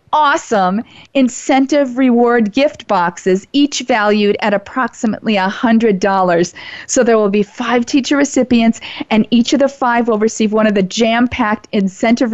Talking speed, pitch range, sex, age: 150 wpm, 205-245 Hz, female, 40-59